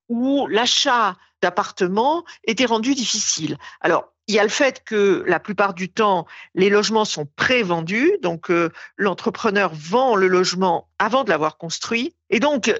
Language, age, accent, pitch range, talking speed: French, 50-69, French, 185-255 Hz, 155 wpm